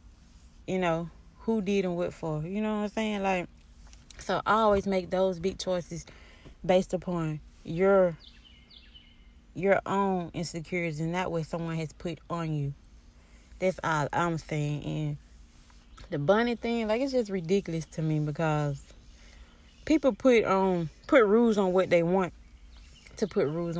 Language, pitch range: English, 145-200 Hz